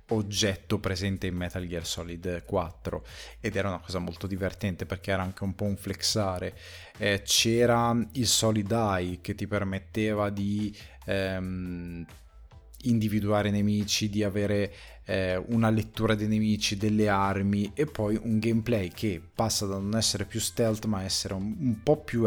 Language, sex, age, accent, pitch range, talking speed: Italian, male, 20-39, native, 90-110 Hz, 155 wpm